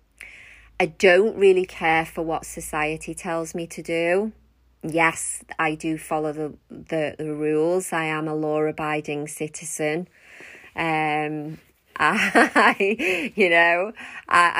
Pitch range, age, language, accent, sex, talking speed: 155-185 Hz, 30-49, English, British, female, 120 wpm